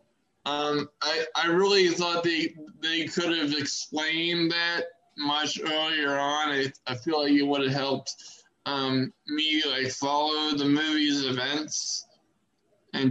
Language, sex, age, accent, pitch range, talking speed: English, male, 20-39, American, 135-155 Hz, 135 wpm